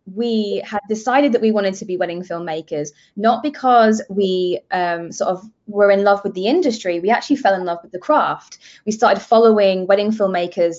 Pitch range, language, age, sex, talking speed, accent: 190-245 Hz, English, 20-39, female, 195 wpm, British